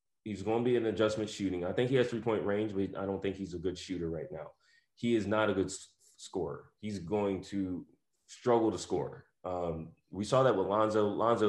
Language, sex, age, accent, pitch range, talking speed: English, male, 20-39, American, 90-105 Hz, 215 wpm